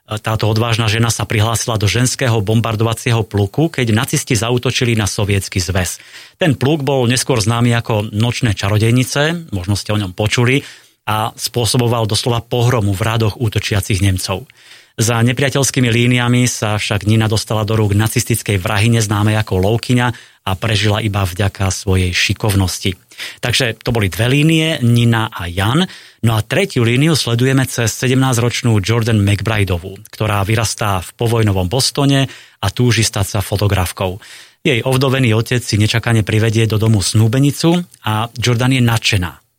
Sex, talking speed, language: male, 145 wpm, Slovak